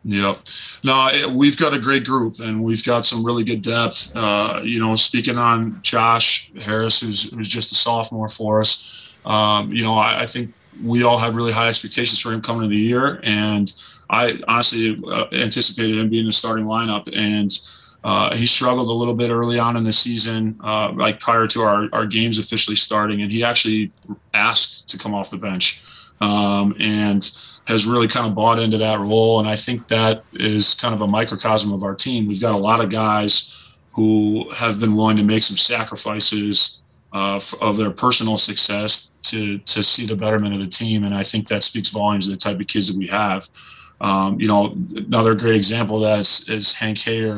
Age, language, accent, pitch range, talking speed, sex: 20-39, English, American, 105-115 Hz, 205 wpm, male